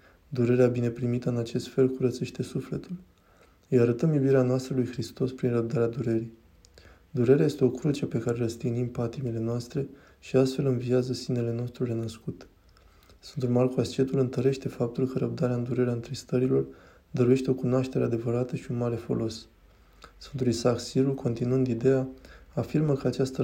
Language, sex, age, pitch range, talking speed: Romanian, male, 20-39, 115-130 Hz, 150 wpm